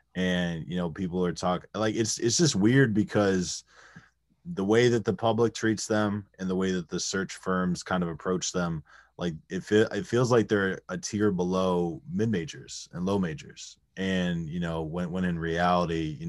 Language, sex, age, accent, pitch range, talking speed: English, male, 20-39, American, 80-110 Hz, 195 wpm